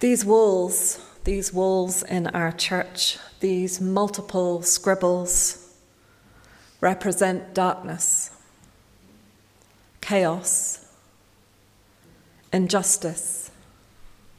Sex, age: female, 40-59